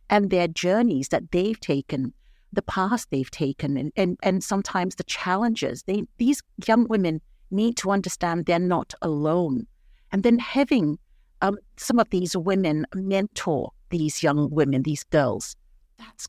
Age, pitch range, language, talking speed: 50-69, 155-205 Hz, English, 150 wpm